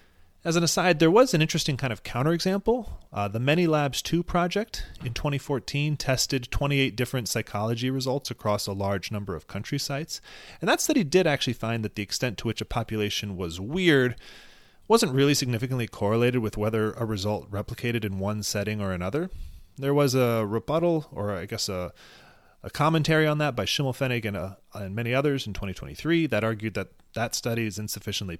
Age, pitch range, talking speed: 30-49, 100-140 Hz, 185 wpm